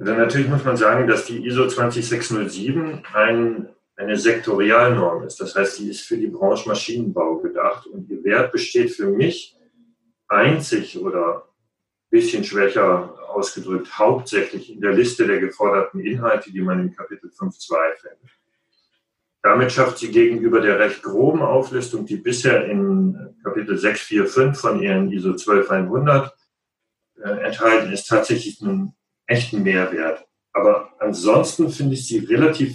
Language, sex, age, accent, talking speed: German, male, 40-59, German, 140 wpm